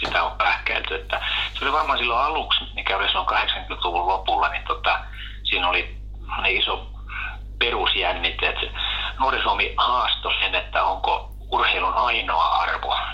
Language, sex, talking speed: Finnish, male, 125 wpm